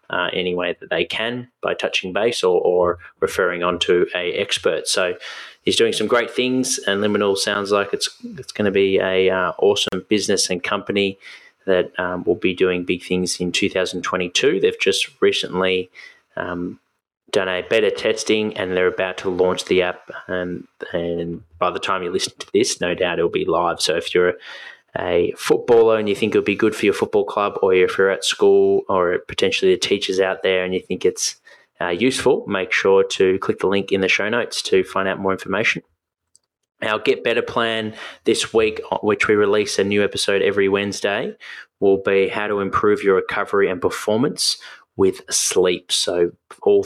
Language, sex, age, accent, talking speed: English, male, 20-39, Australian, 195 wpm